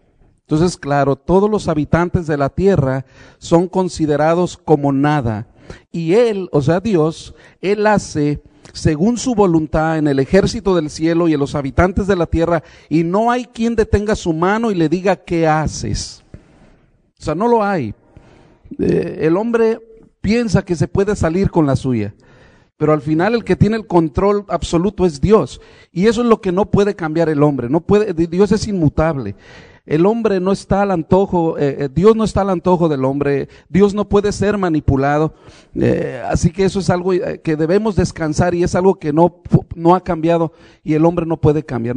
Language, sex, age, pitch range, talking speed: English, male, 40-59, 150-190 Hz, 185 wpm